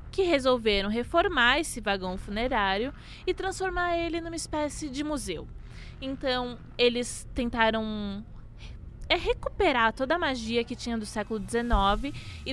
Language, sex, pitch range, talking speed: Portuguese, female, 200-280 Hz, 130 wpm